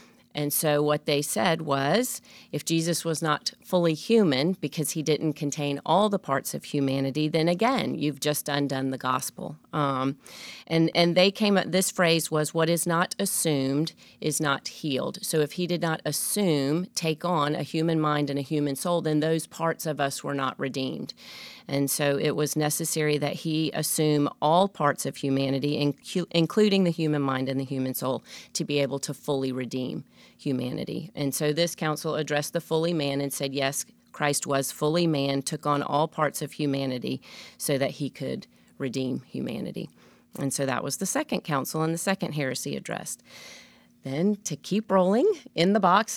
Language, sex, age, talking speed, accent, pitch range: English, female, 40-59, 180 wpm, American, 140-170 Hz